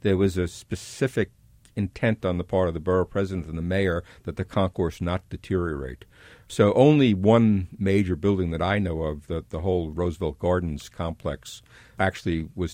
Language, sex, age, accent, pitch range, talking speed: English, male, 50-69, American, 85-105 Hz, 175 wpm